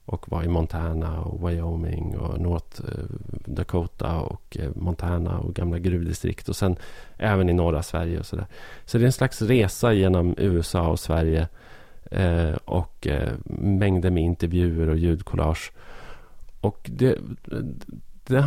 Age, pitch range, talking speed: 30-49, 85-105 Hz, 135 wpm